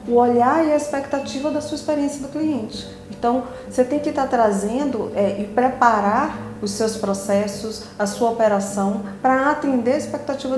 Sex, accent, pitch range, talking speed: female, Brazilian, 205-265 Hz, 165 wpm